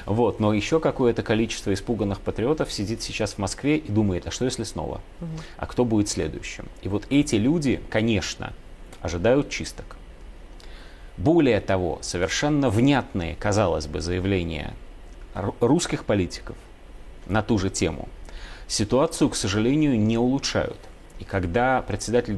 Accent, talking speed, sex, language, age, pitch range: native, 130 wpm, male, Russian, 30-49, 90-130 Hz